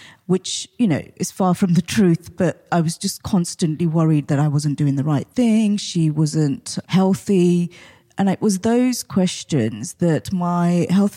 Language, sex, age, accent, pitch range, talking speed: English, female, 30-49, British, 160-190 Hz, 170 wpm